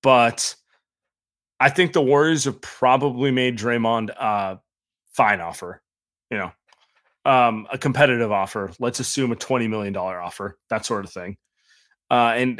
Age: 20-39